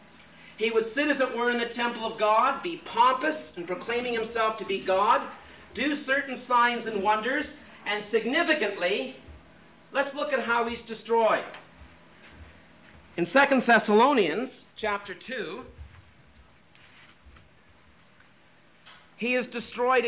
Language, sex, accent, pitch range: English, male, American, 195-245 Hz